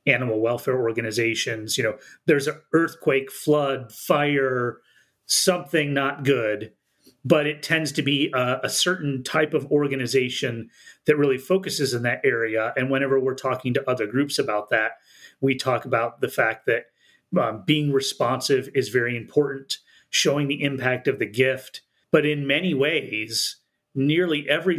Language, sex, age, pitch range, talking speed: English, male, 30-49, 130-150 Hz, 150 wpm